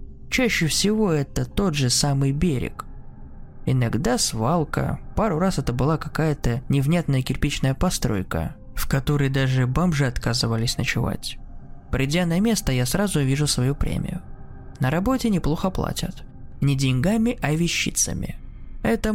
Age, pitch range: 20-39, 125-175 Hz